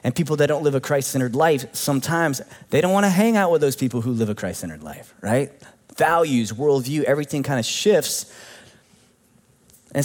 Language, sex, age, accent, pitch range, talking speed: English, male, 20-39, American, 125-165 Hz, 185 wpm